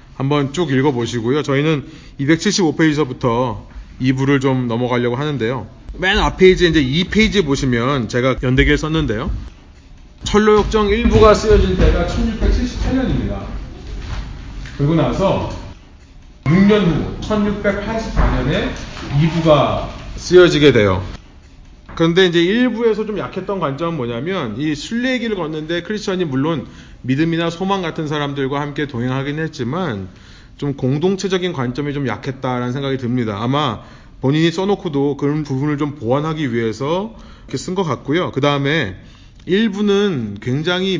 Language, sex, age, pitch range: Korean, male, 30-49, 120-180 Hz